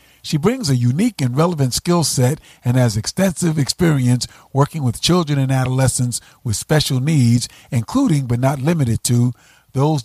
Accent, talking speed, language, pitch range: American, 155 wpm, English, 120-150 Hz